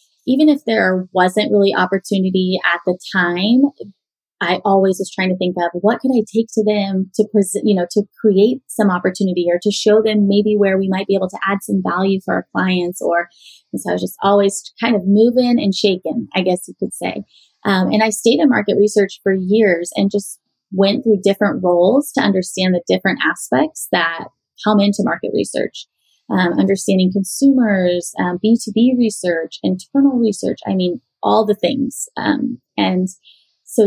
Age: 20-39